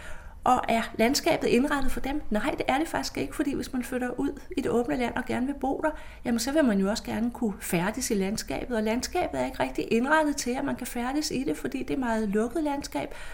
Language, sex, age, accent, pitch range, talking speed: Danish, female, 30-49, native, 215-275 Hz, 255 wpm